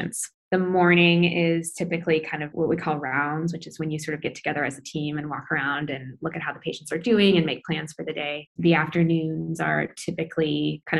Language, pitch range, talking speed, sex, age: English, 155-175 Hz, 235 wpm, female, 20-39